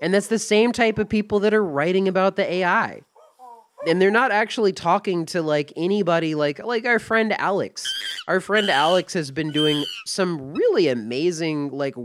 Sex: male